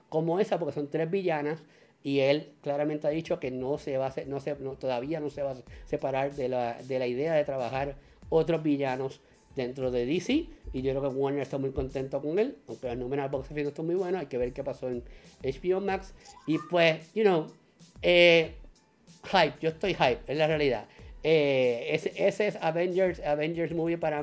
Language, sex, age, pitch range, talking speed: English, male, 50-69, 135-170 Hz, 210 wpm